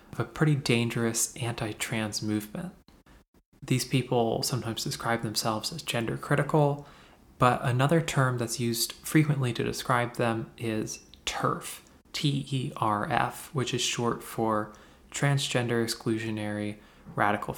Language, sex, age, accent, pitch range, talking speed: English, male, 20-39, American, 115-145 Hz, 110 wpm